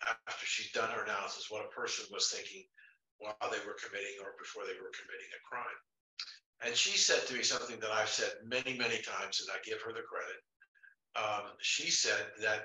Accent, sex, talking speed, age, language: American, male, 205 wpm, 60-79, English